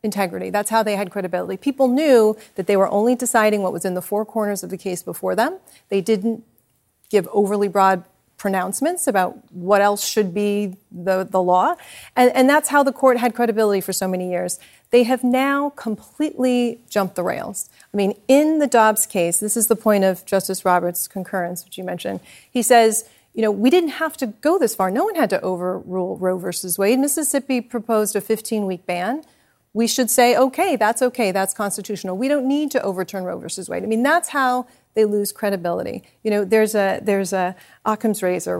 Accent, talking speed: American, 200 wpm